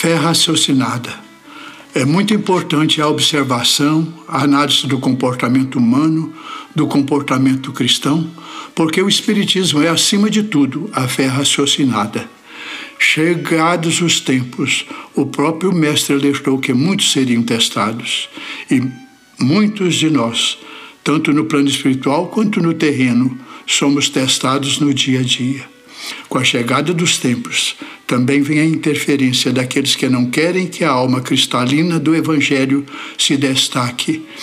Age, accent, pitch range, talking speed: 60-79, Brazilian, 130-165 Hz, 130 wpm